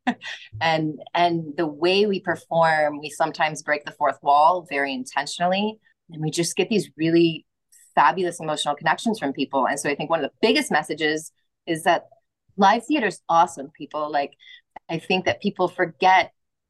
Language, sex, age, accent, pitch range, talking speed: English, female, 30-49, American, 145-185 Hz, 170 wpm